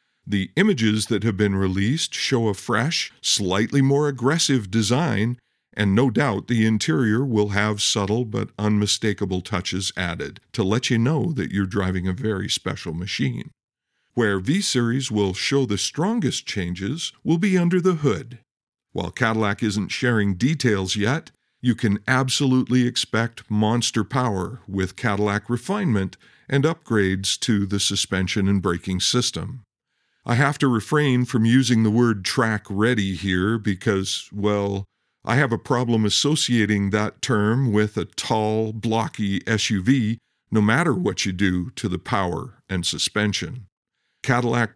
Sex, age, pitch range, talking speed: male, 50-69, 100-130 Hz, 140 wpm